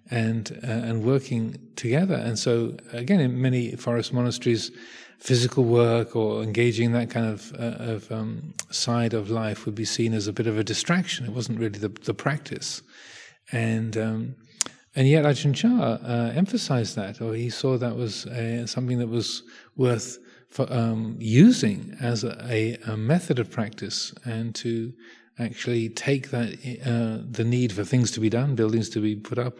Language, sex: English, male